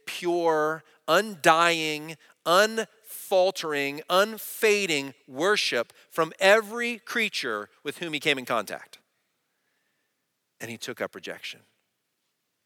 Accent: American